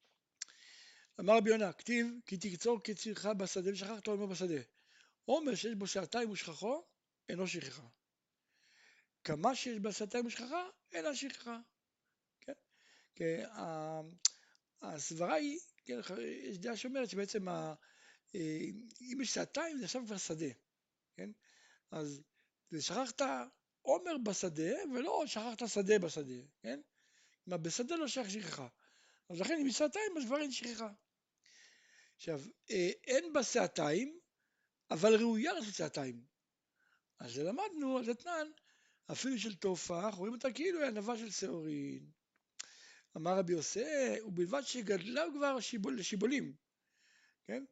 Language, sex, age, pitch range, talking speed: Hebrew, male, 60-79, 195-285 Hz, 90 wpm